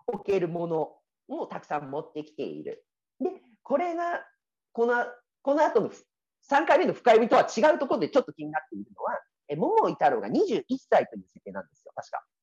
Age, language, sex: 40-59, Japanese, male